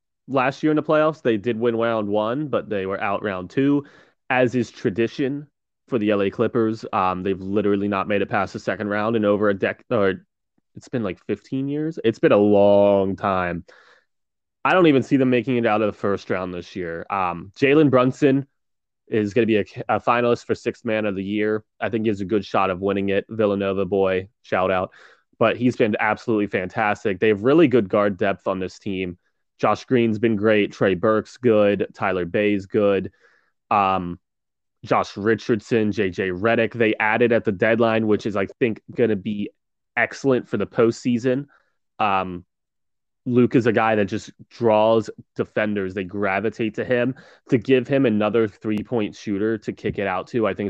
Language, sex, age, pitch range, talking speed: English, male, 20-39, 100-120 Hz, 195 wpm